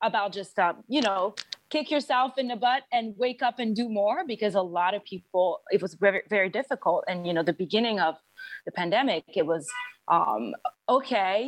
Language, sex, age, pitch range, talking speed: English, female, 30-49, 185-250 Hz, 200 wpm